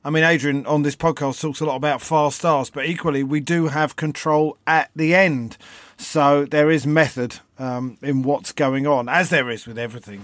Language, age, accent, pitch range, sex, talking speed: English, 40-59, British, 145-175 Hz, male, 205 wpm